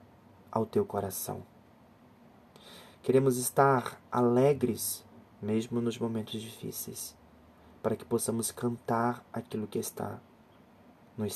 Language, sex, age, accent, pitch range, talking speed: Portuguese, male, 30-49, Brazilian, 105-125 Hz, 95 wpm